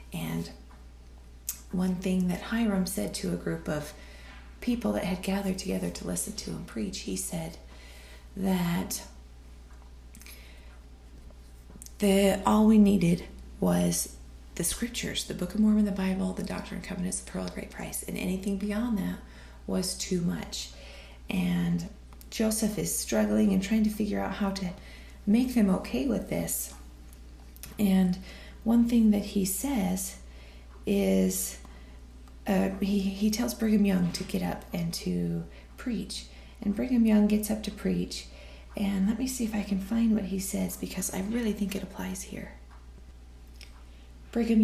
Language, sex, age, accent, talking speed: English, female, 30-49, American, 150 wpm